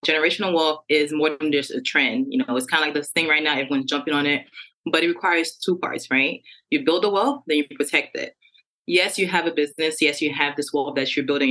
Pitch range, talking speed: 145-170 Hz, 255 wpm